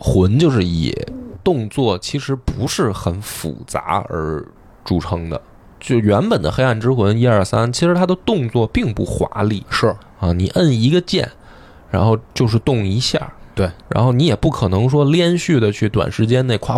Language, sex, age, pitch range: Chinese, male, 20-39, 100-135 Hz